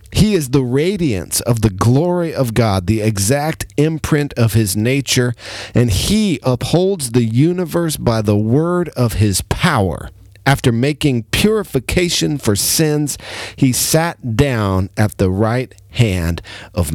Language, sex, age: English, male, 40-59